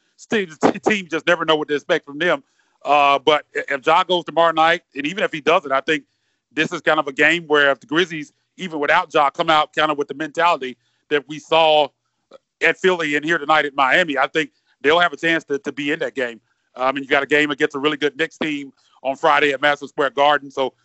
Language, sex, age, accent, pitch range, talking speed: English, male, 30-49, American, 140-170 Hz, 250 wpm